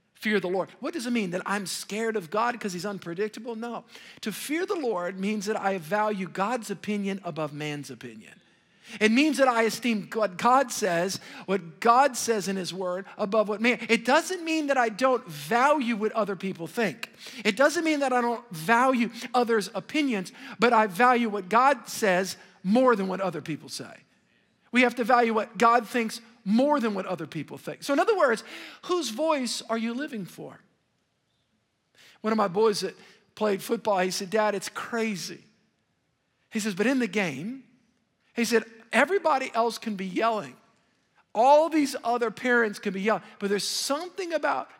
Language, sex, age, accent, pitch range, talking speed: English, male, 50-69, American, 195-245 Hz, 185 wpm